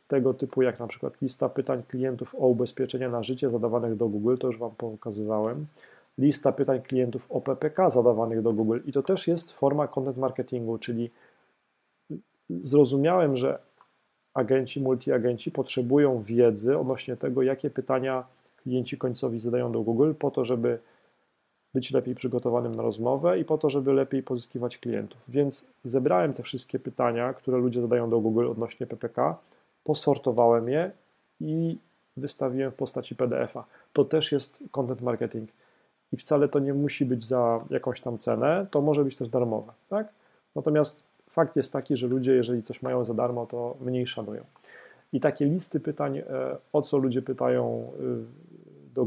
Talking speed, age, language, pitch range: 155 wpm, 40-59, Polish, 120-140 Hz